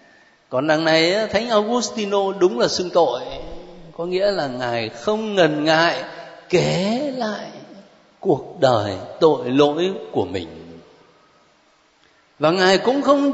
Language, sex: Vietnamese, male